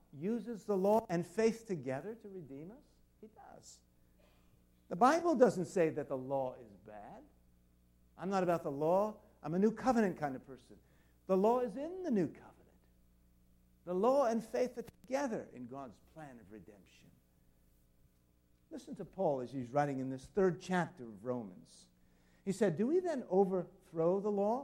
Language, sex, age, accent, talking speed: English, male, 60-79, American, 170 wpm